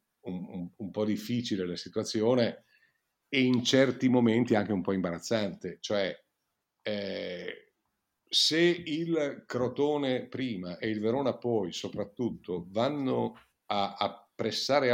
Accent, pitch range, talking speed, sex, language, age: native, 105-130 Hz, 115 wpm, male, Italian, 50-69